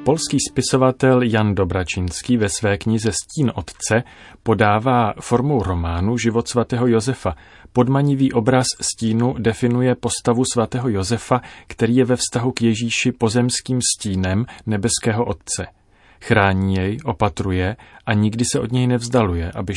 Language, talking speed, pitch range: Czech, 125 wpm, 100-125 Hz